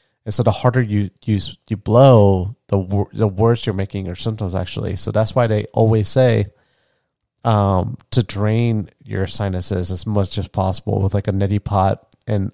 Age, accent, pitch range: 30-49, American, 100-115 Hz